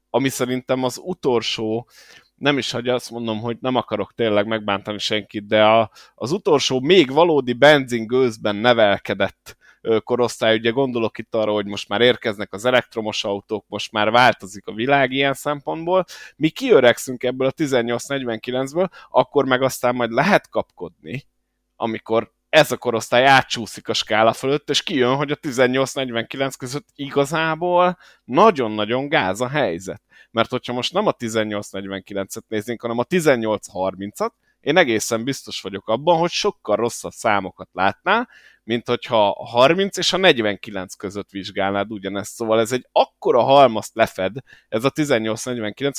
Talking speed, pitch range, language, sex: 145 wpm, 110-135 Hz, Hungarian, male